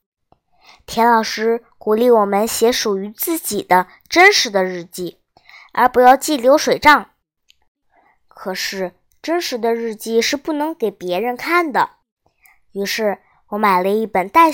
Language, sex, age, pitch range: Chinese, male, 20-39, 200-270 Hz